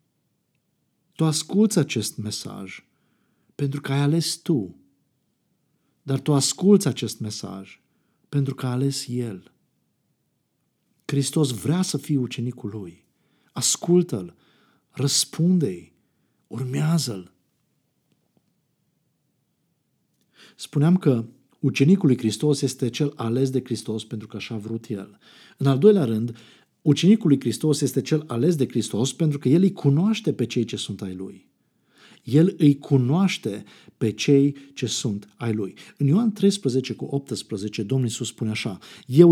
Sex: male